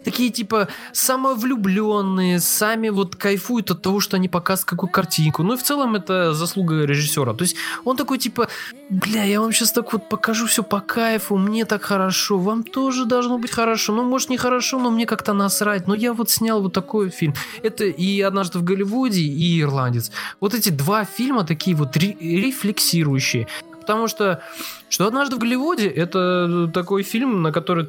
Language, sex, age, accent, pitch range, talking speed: Russian, male, 20-39, native, 155-225 Hz, 185 wpm